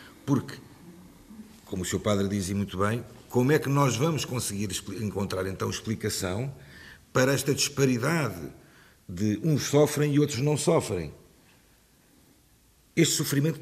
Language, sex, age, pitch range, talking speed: Portuguese, male, 50-69, 110-145 Hz, 130 wpm